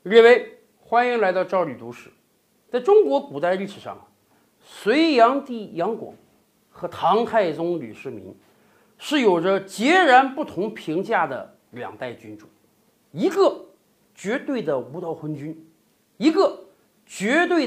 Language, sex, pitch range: Chinese, male, 190-280 Hz